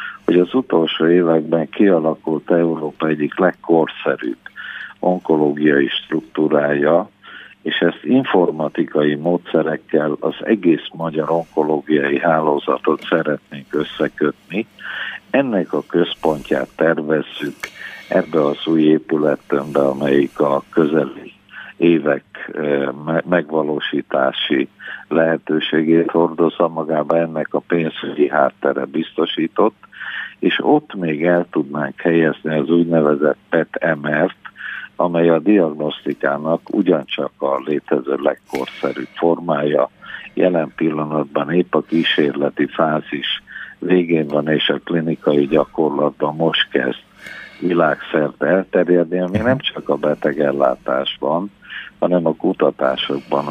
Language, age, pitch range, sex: Hungarian, 50-69, 75-85 Hz, male